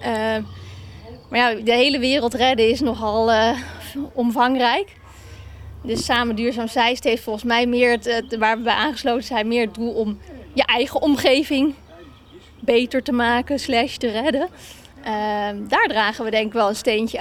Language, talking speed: Dutch, 165 wpm